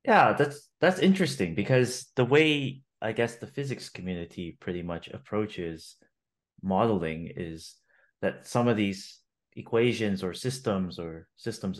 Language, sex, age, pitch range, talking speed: English, male, 30-49, 85-110 Hz, 130 wpm